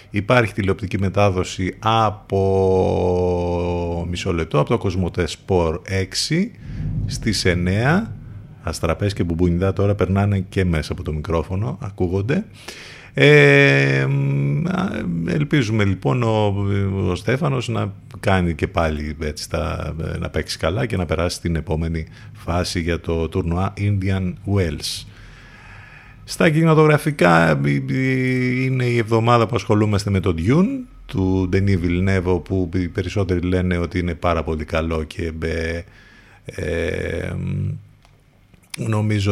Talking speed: 110 wpm